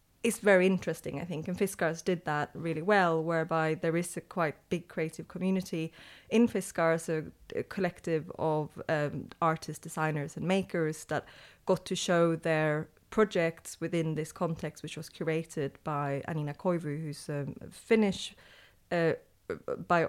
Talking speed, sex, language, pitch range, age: 150 wpm, female, English, 155-175 Hz, 20-39